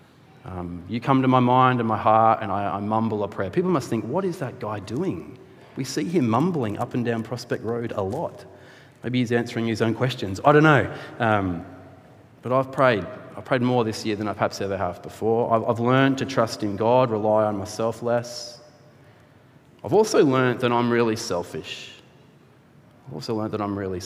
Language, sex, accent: English, male, Australian